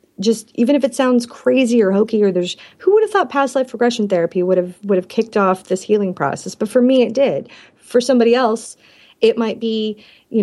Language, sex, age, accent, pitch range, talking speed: English, female, 30-49, American, 180-235 Hz, 225 wpm